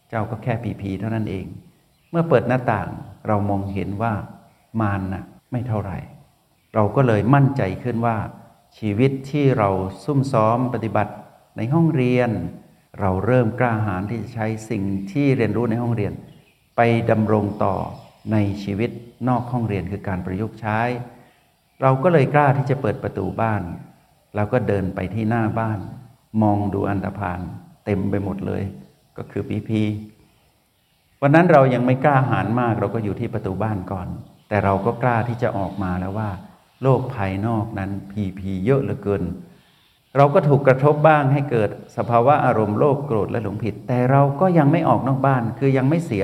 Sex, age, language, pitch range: male, 60-79, Thai, 100-125 Hz